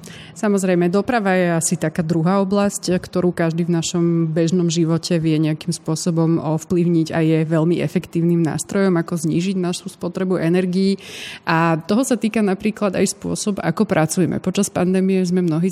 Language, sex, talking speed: Slovak, female, 155 wpm